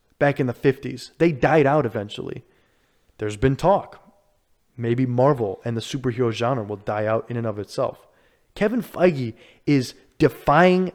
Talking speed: 155 wpm